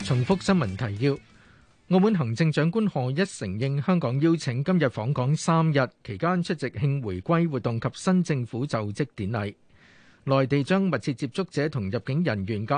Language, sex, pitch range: Chinese, male, 120-170 Hz